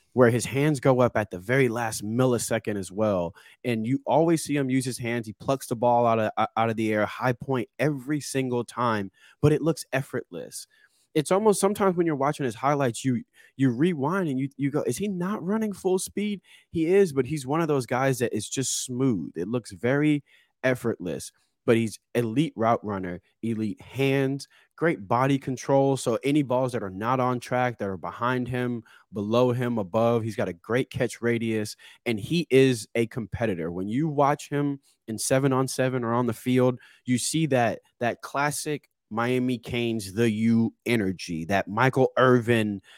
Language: English